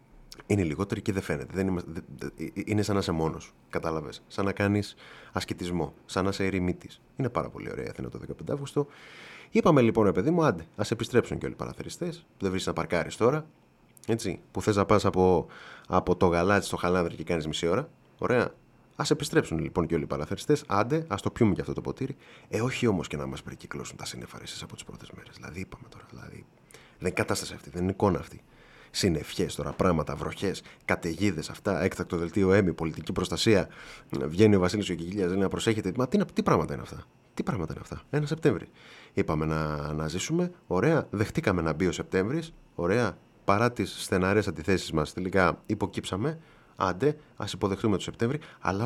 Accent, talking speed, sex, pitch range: native, 190 wpm, male, 90-115 Hz